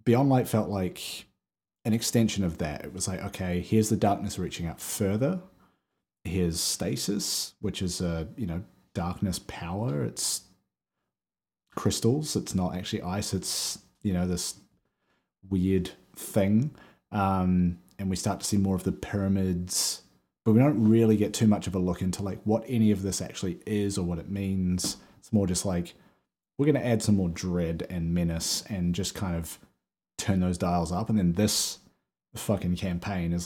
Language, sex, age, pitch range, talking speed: English, male, 30-49, 90-105 Hz, 175 wpm